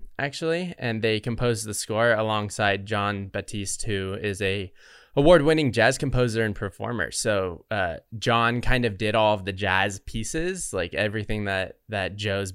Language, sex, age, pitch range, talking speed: English, male, 20-39, 100-120 Hz, 160 wpm